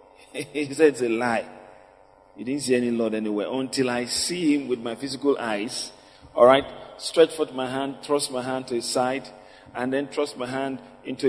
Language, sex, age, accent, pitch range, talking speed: English, male, 40-59, Nigerian, 115-140 Hz, 200 wpm